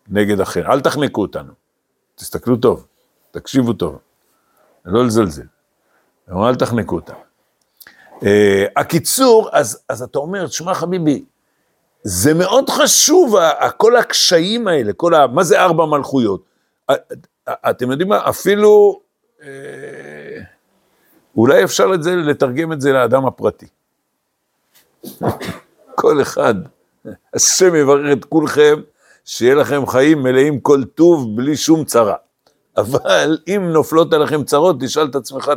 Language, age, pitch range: Hebrew, 60-79, 130-180 Hz